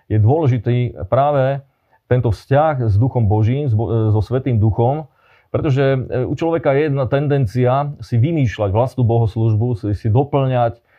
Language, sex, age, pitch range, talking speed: Slovak, male, 30-49, 110-140 Hz, 125 wpm